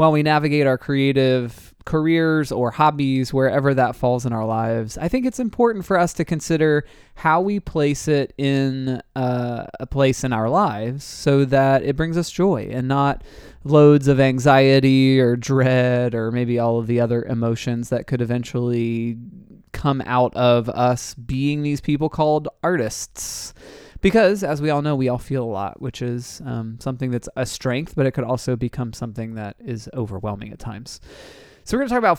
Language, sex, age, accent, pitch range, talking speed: English, male, 20-39, American, 120-150 Hz, 185 wpm